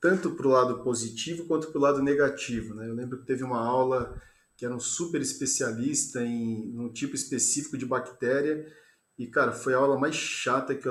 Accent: Brazilian